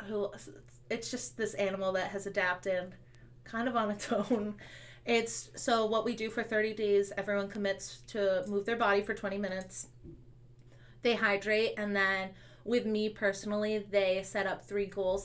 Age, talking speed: 20-39, 165 wpm